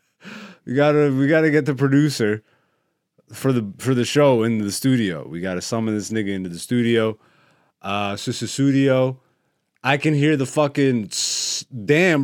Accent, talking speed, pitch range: American, 165 wpm, 110-155 Hz